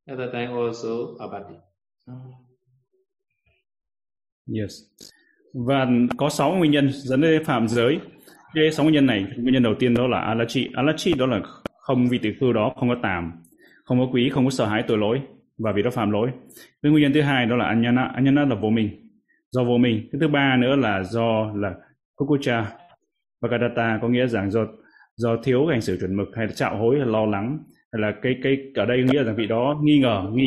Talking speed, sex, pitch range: 195 wpm, male, 110-135 Hz